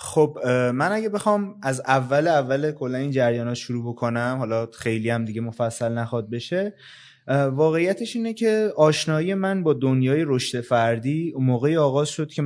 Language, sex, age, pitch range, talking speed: Persian, male, 20-39, 125-170 Hz, 165 wpm